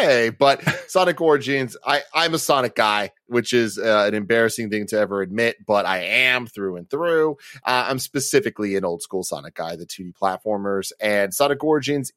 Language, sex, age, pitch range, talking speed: English, male, 30-49, 105-145 Hz, 180 wpm